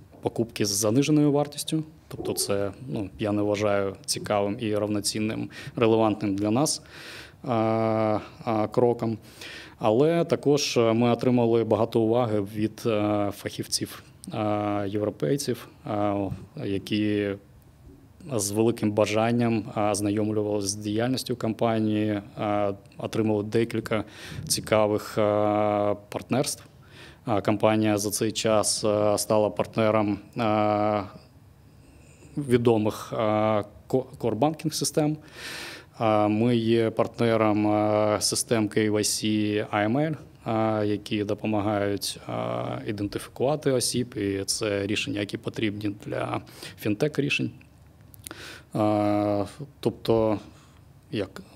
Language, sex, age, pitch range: Ukrainian, male, 20-39, 105-120 Hz